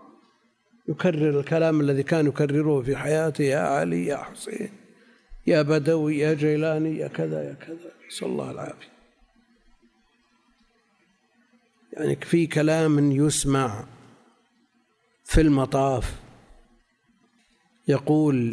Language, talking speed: Arabic, 95 wpm